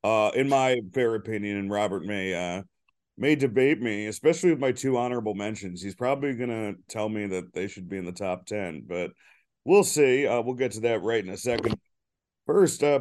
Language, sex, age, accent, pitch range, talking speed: English, male, 40-59, American, 105-130 Hz, 210 wpm